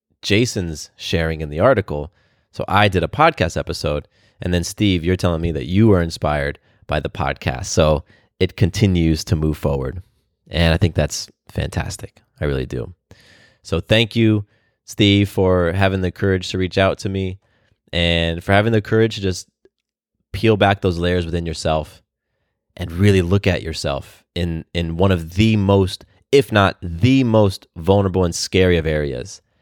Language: English